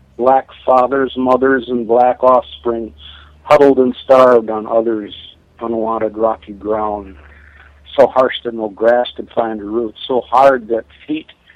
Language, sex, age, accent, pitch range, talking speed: English, male, 60-79, American, 105-125 Hz, 140 wpm